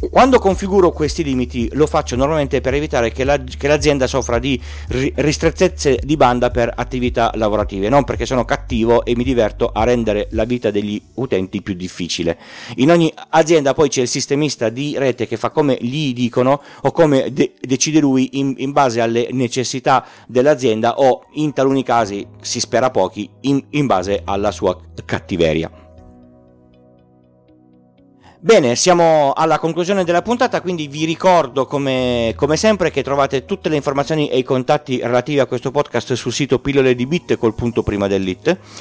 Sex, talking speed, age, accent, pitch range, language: male, 165 wpm, 40-59, native, 110-150 Hz, Italian